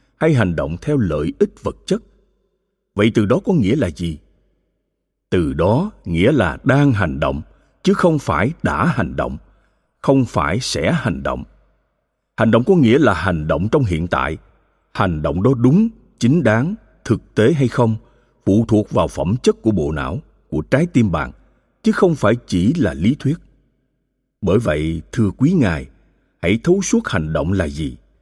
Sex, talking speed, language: male, 180 wpm, Vietnamese